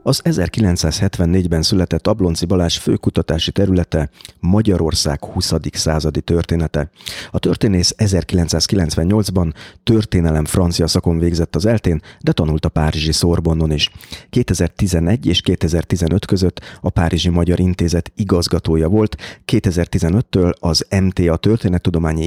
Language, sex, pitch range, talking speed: Hungarian, male, 80-100 Hz, 110 wpm